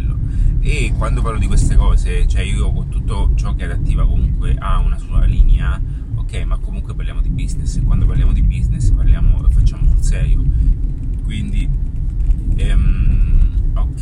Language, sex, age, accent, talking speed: Italian, male, 30-49, native, 160 wpm